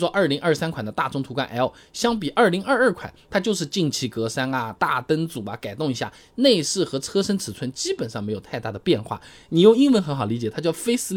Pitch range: 125-185 Hz